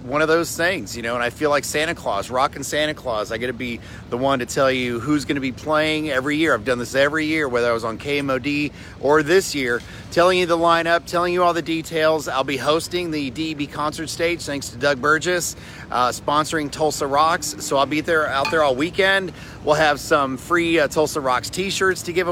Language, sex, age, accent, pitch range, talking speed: English, male, 40-59, American, 120-155 Hz, 230 wpm